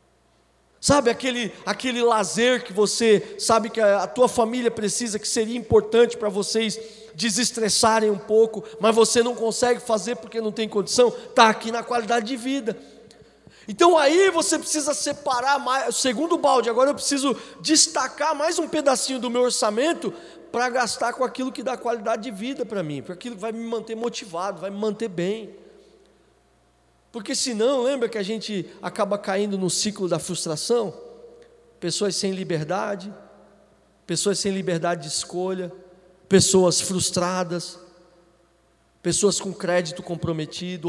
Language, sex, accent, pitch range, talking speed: Portuguese, male, Brazilian, 185-250 Hz, 150 wpm